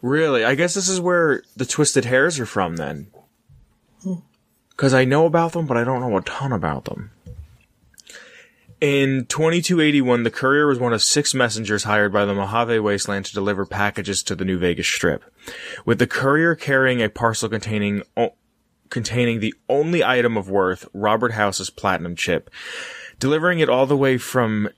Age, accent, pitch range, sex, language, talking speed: 20-39, American, 100-130 Hz, male, English, 170 wpm